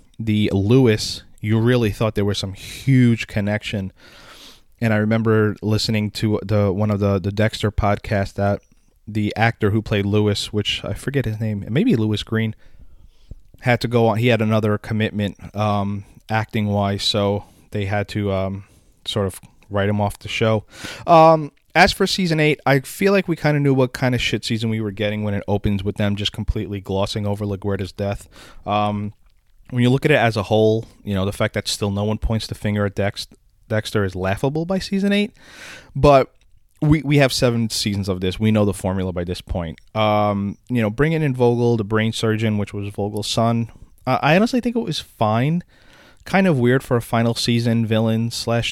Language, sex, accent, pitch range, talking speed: English, male, American, 100-120 Hz, 200 wpm